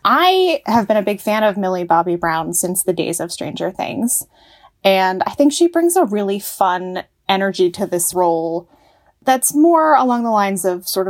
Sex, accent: female, American